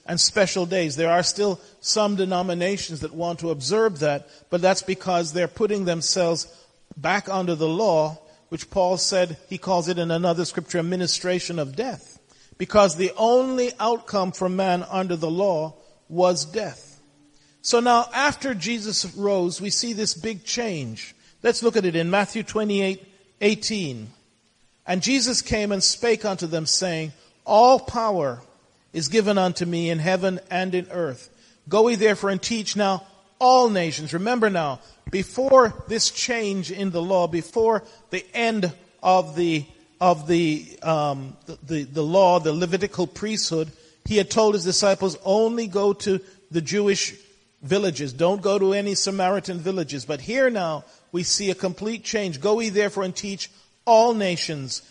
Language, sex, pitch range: English, male, 170-205 Hz